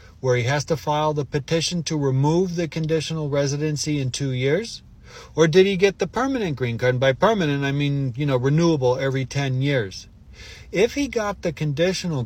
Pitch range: 115-155 Hz